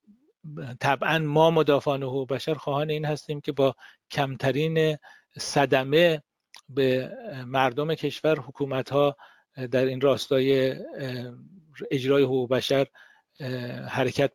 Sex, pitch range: male, 125-145 Hz